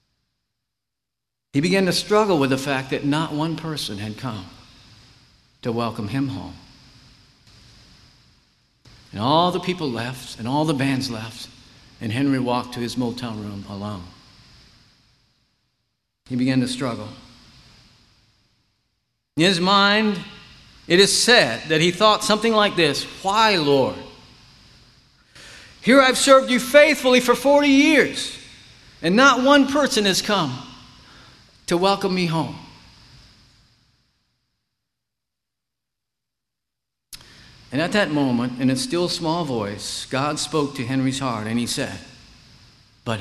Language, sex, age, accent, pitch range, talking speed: English, male, 50-69, American, 115-160 Hz, 125 wpm